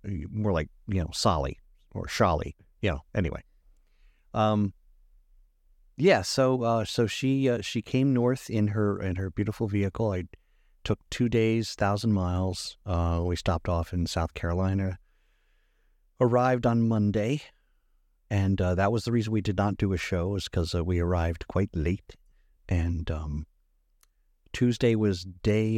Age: 50-69